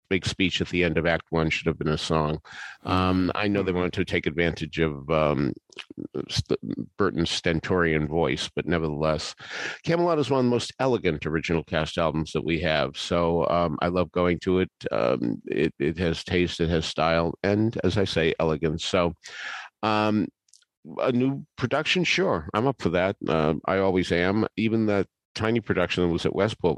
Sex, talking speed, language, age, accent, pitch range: male, 190 wpm, English, 50-69, American, 80-95 Hz